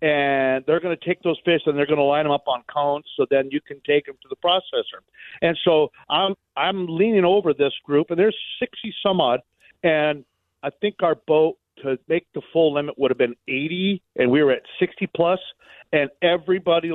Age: 50-69